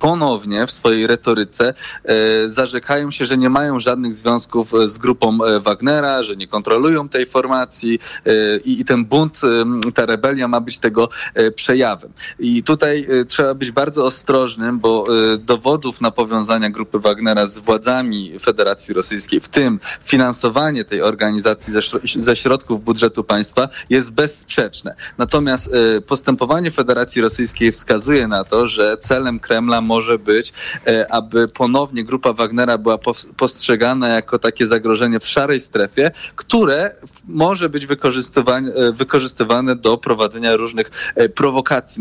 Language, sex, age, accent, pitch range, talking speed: Polish, male, 20-39, native, 115-130 Hz, 125 wpm